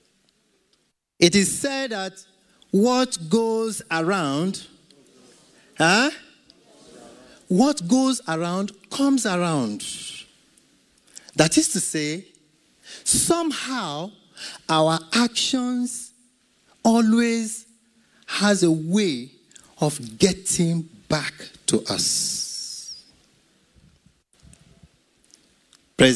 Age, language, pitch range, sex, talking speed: 50-69, English, 175-260 Hz, male, 65 wpm